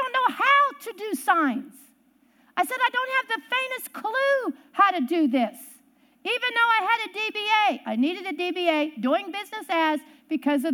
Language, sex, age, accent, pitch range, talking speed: English, female, 50-69, American, 270-415 Hz, 170 wpm